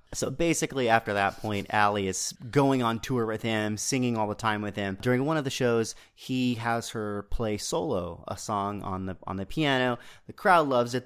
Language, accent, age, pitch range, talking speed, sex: English, American, 30-49, 110-140 Hz, 210 wpm, male